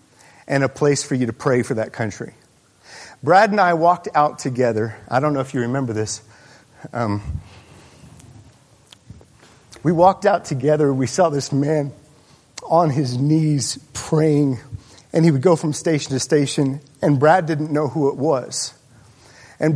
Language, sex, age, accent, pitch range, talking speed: English, male, 50-69, American, 135-190 Hz, 160 wpm